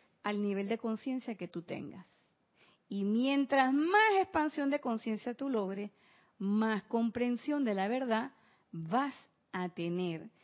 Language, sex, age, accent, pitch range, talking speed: Spanish, female, 40-59, American, 220-305 Hz, 130 wpm